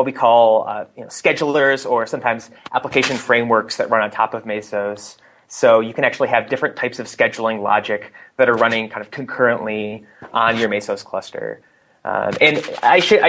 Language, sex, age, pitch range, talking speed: English, male, 30-49, 115-145 Hz, 170 wpm